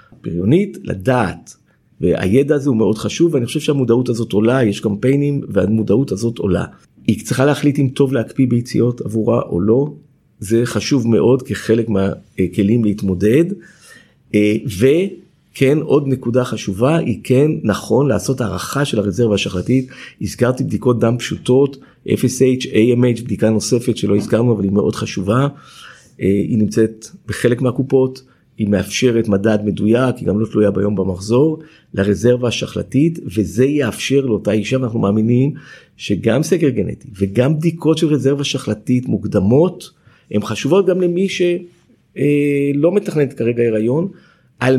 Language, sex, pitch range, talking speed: Hebrew, male, 105-140 Hz, 135 wpm